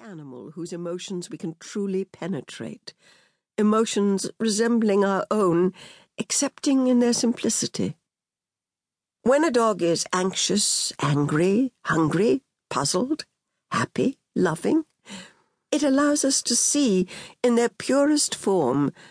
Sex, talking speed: female, 105 wpm